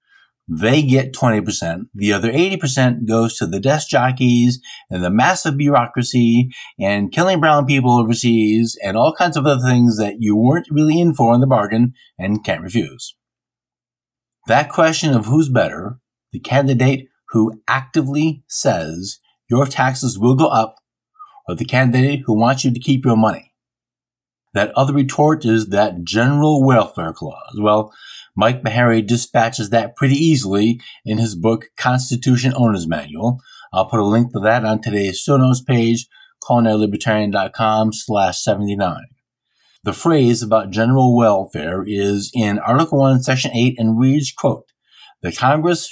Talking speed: 150 wpm